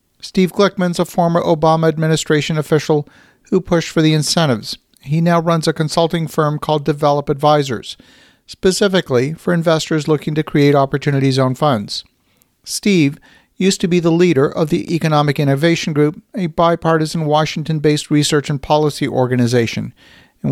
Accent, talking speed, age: American, 145 wpm, 50-69